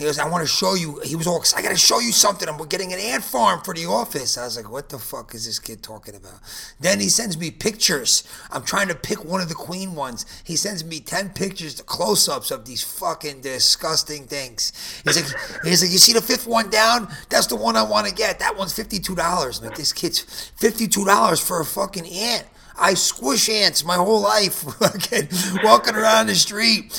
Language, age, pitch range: English, 30-49, 135-190 Hz